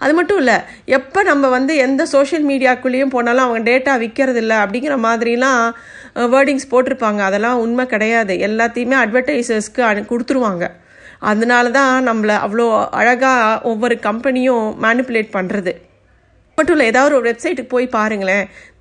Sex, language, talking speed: female, Tamil, 130 wpm